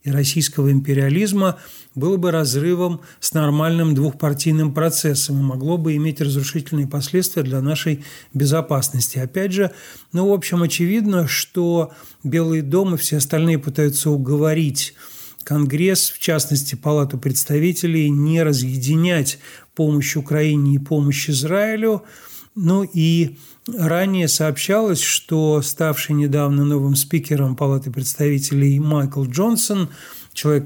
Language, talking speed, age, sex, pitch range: Russian, 115 wpm, 40-59, male, 140-165 Hz